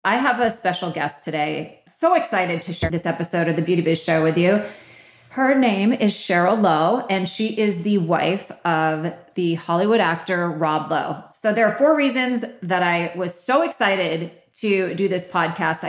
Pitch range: 170-215 Hz